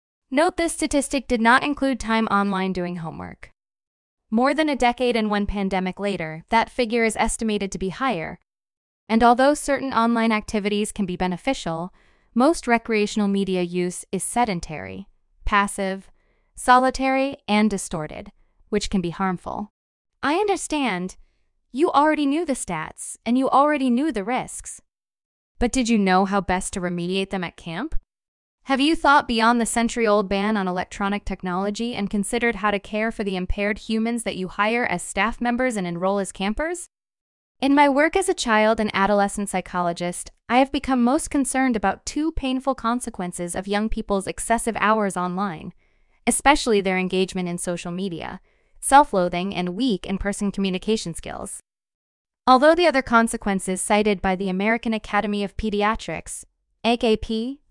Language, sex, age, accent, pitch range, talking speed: English, female, 20-39, American, 190-250 Hz, 155 wpm